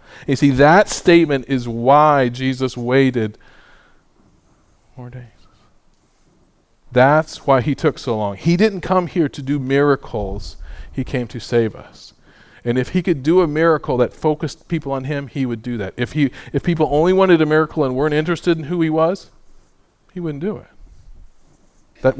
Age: 40-59